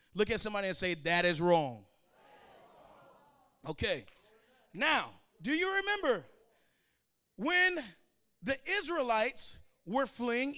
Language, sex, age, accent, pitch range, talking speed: English, male, 40-59, American, 265-375 Hz, 100 wpm